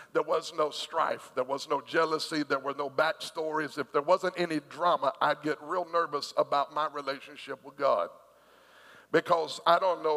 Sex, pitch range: male, 150-175 Hz